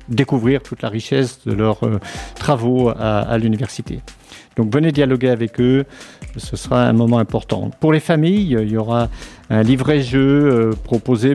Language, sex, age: French, male, 50-69